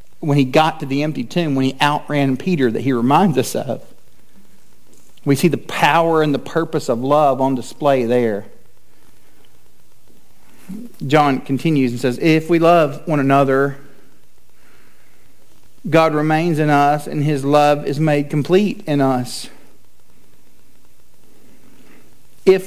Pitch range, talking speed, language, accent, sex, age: 150-215 Hz, 130 wpm, English, American, male, 40-59